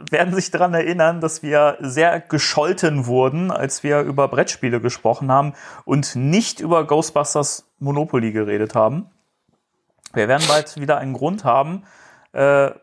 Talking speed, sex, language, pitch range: 140 wpm, male, German, 125-155 Hz